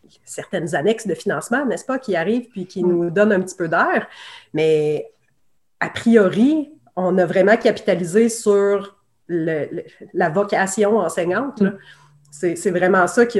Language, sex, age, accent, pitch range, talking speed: French, female, 30-49, Canadian, 175-215 Hz, 140 wpm